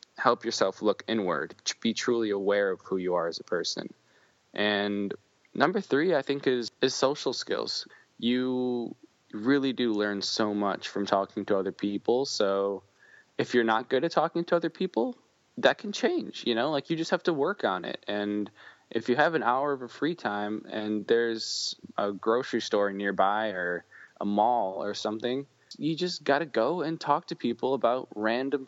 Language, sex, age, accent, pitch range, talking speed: English, male, 20-39, American, 100-130 Hz, 190 wpm